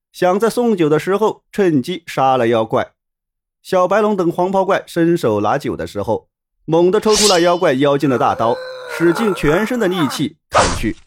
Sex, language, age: male, Chinese, 30-49